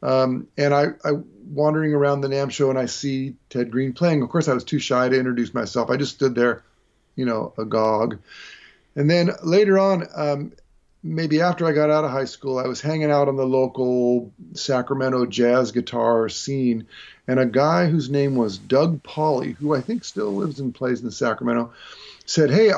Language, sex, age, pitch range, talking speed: English, male, 40-59, 130-165 Hz, 190 wpm